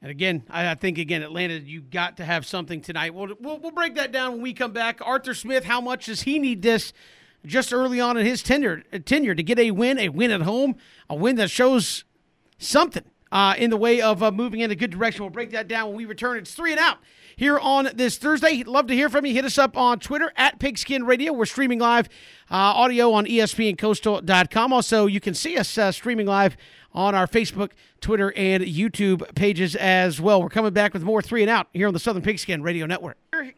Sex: male